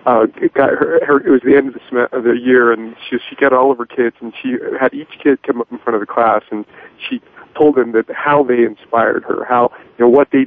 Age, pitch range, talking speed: 40-59, 115-140 Hz, 275 wpm